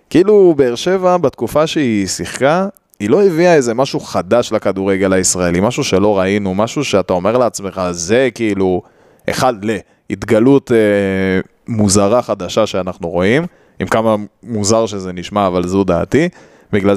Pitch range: 95-130 Hz